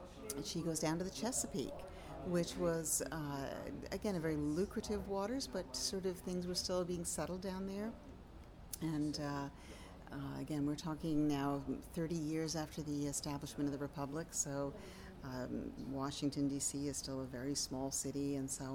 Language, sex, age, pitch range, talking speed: English, female, 50-69, 135-170 Hz, 165 wpm